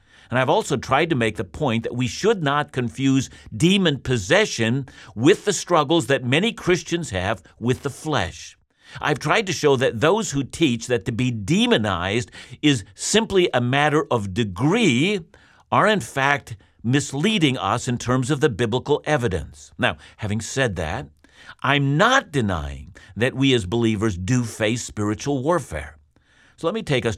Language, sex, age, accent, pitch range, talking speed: English, male, 60-79, American, 105-150 Hz, 165 wpm